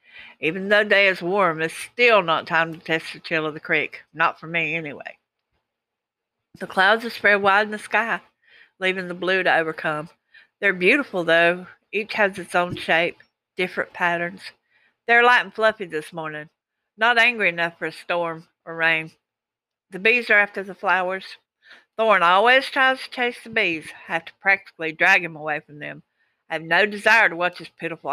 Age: 60-79